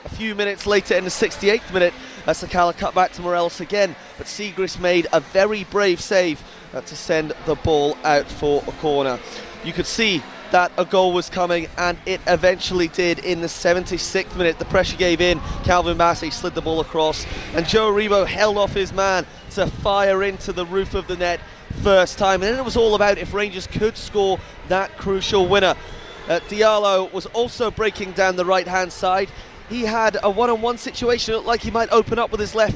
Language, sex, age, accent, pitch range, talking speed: English, male, 20-39, British, 175-210 Hz, 200 wpm